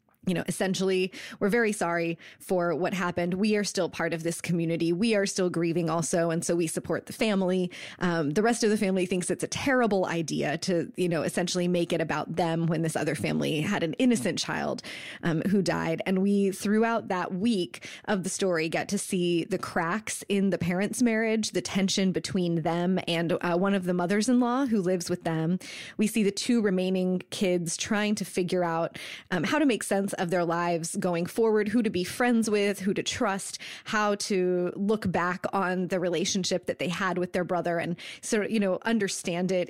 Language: English